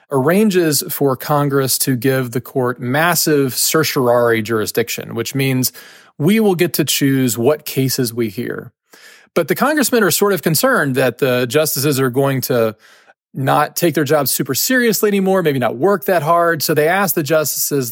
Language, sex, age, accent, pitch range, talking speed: English, male, 40-59, American, 125-170 Hz, 170 wpm